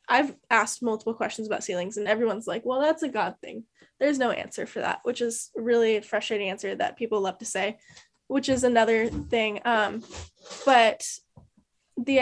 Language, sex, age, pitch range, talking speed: English, female, 10-29, 210-245 Hz, 180 wpm